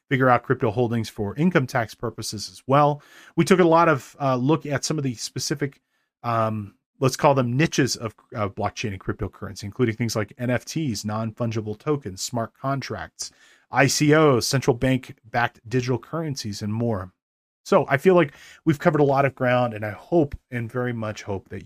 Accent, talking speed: American, 180 wpm